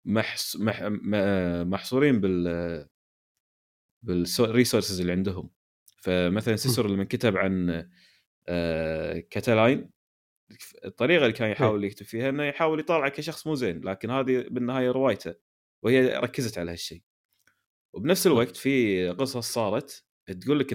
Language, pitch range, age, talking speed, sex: Arabic, 90-130 Hz, 30-49, 115 wpm, male